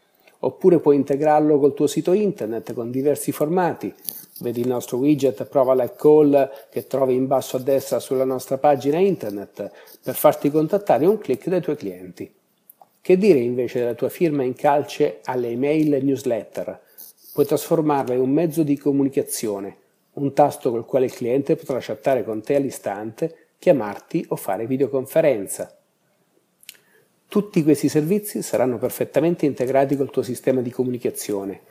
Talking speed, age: 155 wpm, 50-69